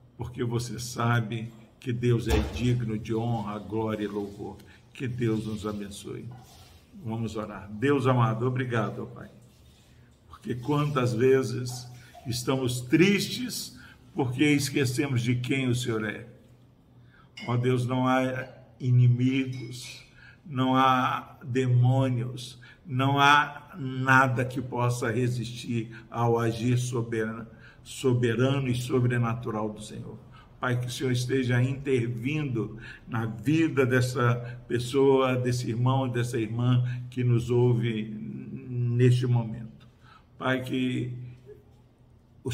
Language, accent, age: Portuguese, Brazilian, 60-79